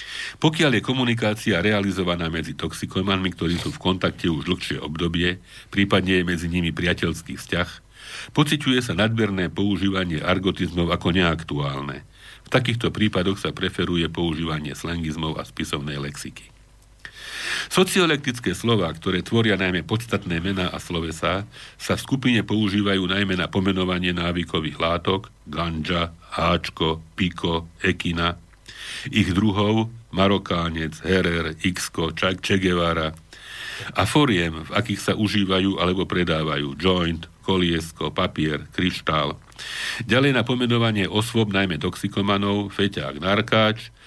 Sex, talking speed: male, 115 wpm